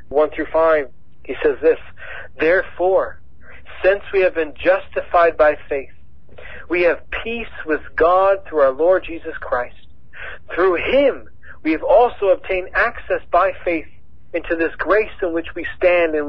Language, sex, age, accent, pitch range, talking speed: English, male, 40-59, American, 150-230 Hz, 145 wpm